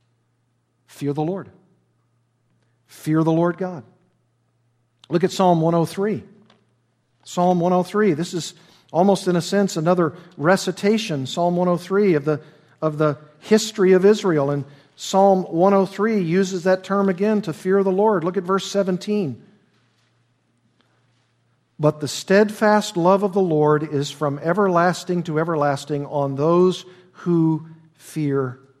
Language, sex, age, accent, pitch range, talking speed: English, male, 50-69, American, 145-195 Hz, 125 wpm